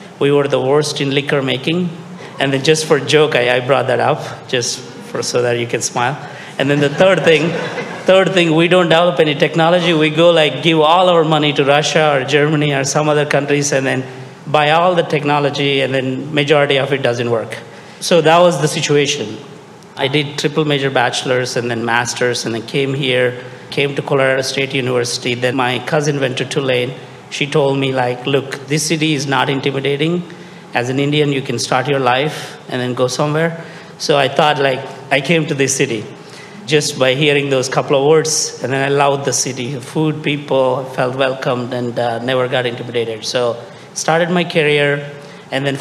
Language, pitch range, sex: English, 130-155 Hz, male